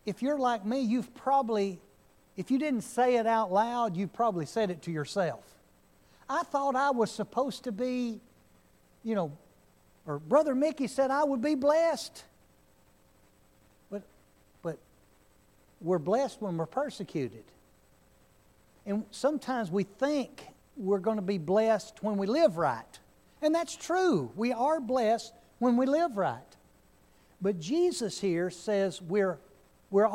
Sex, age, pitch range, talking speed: male, 60-79, 190-265 Hz, 145 wpm